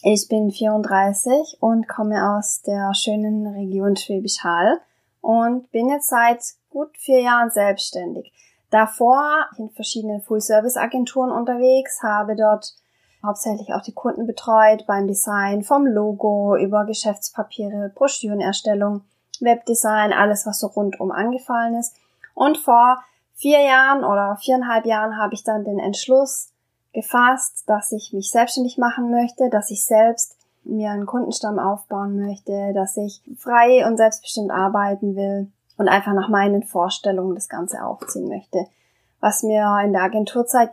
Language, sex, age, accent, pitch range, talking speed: German, female, 20-39, German, 205-240 Hz, 140 wpm